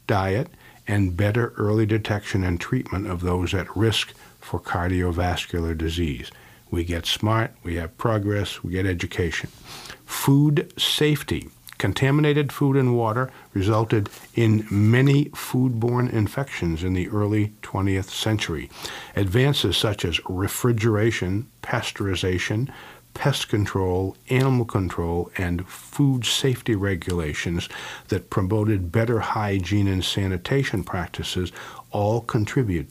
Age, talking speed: 50-69, 110 wpm